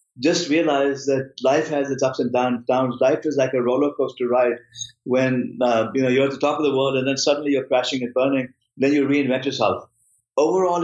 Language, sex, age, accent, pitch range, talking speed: English, male, 50-69, Indian, 125-145 Hz, 215 wpm